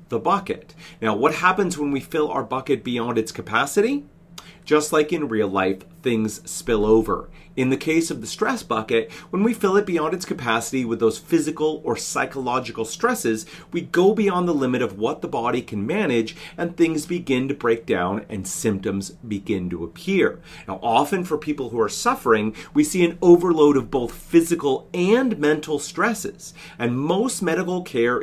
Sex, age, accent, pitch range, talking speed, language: male, 30-49, American, 115-185 Hz, 180 wpm, English